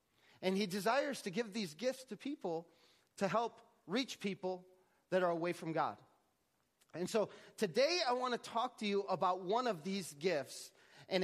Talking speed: 175 wpm